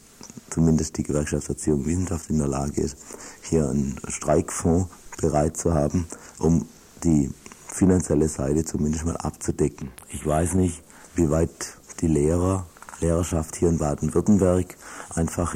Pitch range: 75-85 Hz